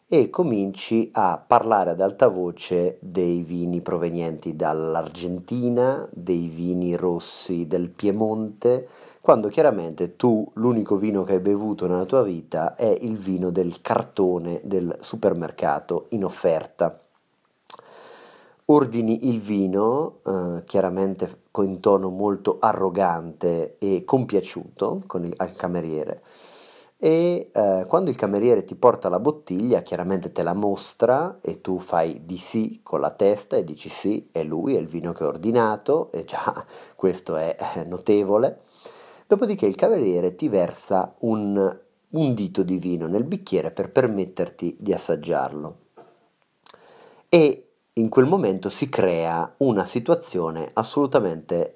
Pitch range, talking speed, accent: 90-120 Hz, 130 wpm, native